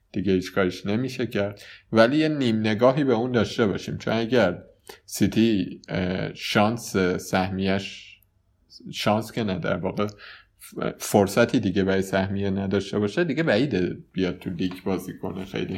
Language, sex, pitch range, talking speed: Persian, male, 95-110 Hz, 135 wpm